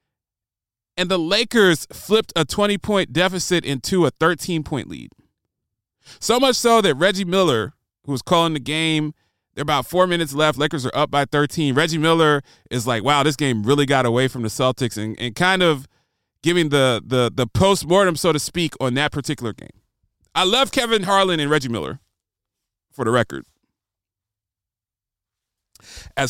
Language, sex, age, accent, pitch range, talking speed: English, male, 30-49, American, 120-165 Hz, 160 wpm